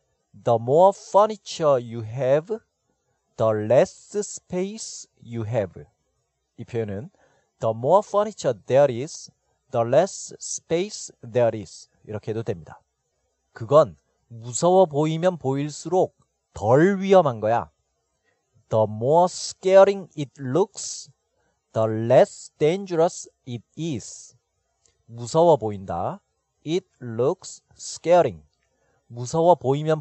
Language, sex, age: Korean, male, 40-59